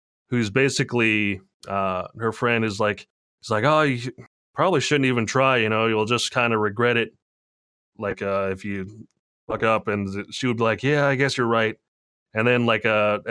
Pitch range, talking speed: 110-135 Hz, 195 wpm